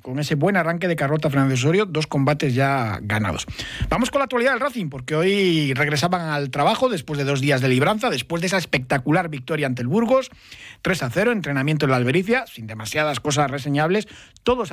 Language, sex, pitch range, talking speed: Spanish, male, 140-195 Hz, 200 wpm